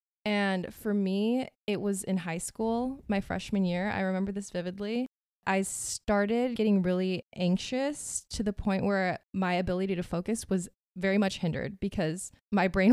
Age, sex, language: 20-39, female, English